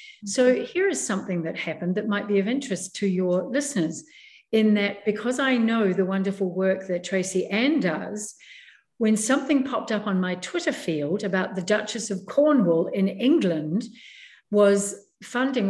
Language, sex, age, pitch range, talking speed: English, female, 50-69, 190-235 Hz, 165 wpm